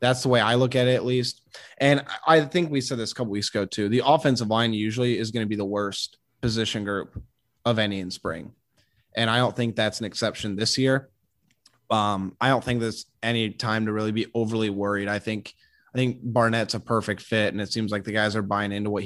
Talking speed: 235 wpm